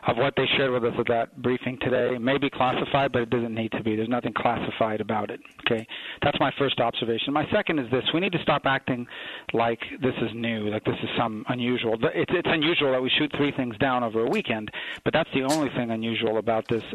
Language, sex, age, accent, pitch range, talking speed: English, male, 40-59, American, 115-140 Hz, 235 wpm